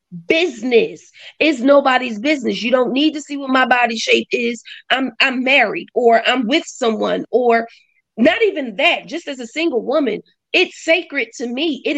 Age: 30-49